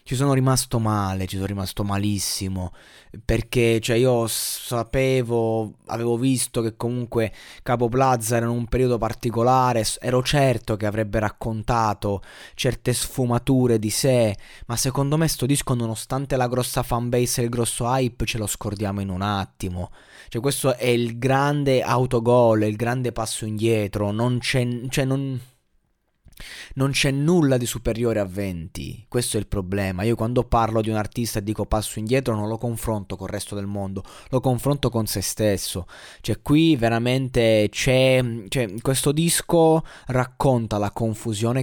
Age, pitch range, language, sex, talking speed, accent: 20-39, 105-130 Hz, Italian, male, 155 wpm, native